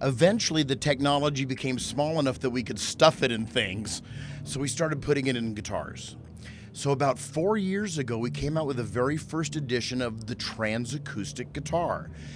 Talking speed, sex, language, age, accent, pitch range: 185 wpm, male, English, 40-59, American, 105-145 Hz